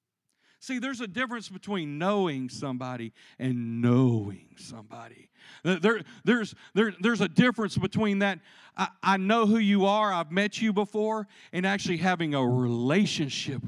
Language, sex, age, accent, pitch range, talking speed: English, male, 40-59, American, 170-230 Hz, 135 wpm